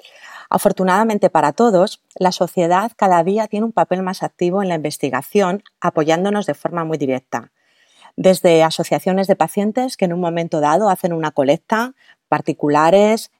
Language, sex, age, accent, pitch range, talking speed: Spanish, female, 40-59, Spanish, 155-205 Hz, 150 wpm